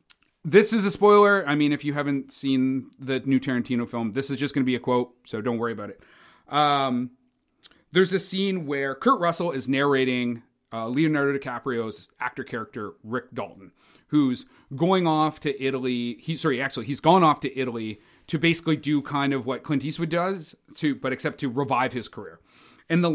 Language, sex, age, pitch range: English, male, 30-49, 135-195 Hz